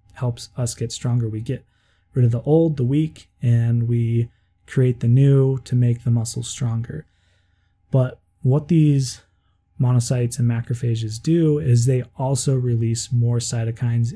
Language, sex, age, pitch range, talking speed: English, male, 20-39, 115-130 Hz, 150 wpm